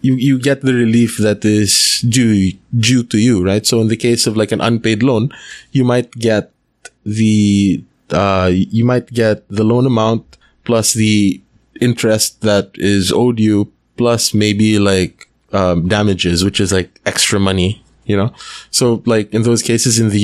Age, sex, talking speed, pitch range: 20-39, male, 170 wpm, 100-120 Hz